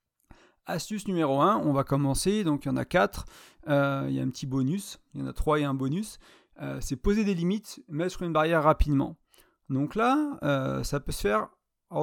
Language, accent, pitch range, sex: French, French, 140-170 Hz, male